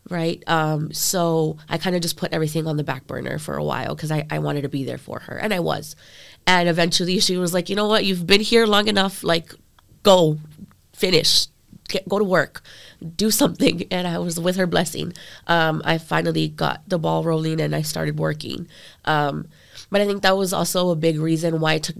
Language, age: English, 20-39